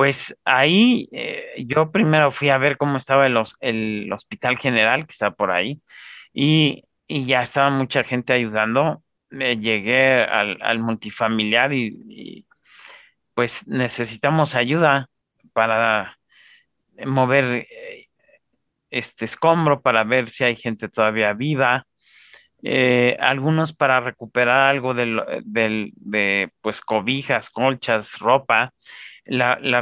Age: 40-59